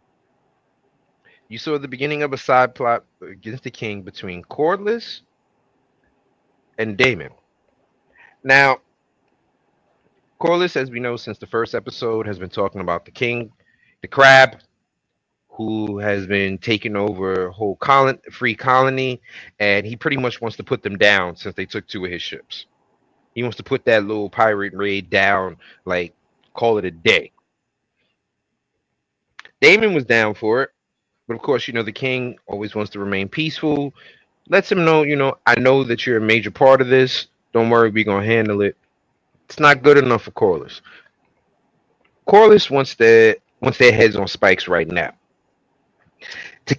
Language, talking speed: English, 165 wpm